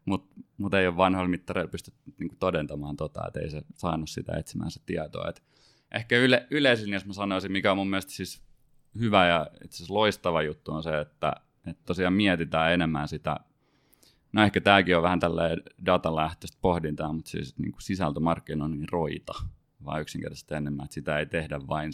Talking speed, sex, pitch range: 165 wpm, male, 75-95 Hz